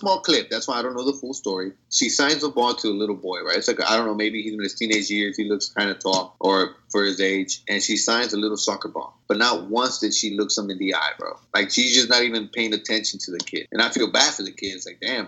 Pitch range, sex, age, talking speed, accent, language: 100-135 Hz, male, 20-39, 305 wpm, American, English